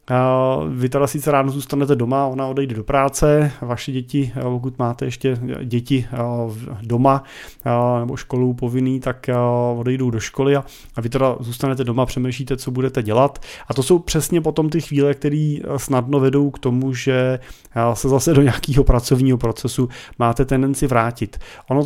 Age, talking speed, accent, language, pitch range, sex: 30-49, 155 wpm, native, Czech, 120-135 Hz, male